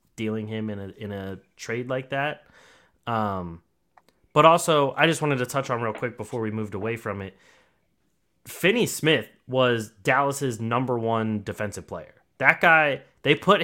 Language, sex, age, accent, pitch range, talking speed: English, male, 30-49, American, 105-130 Hz, 165 wpm